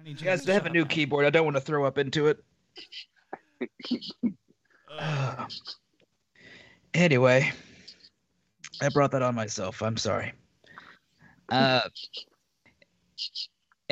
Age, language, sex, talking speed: 30-49, English, male, 110 wpm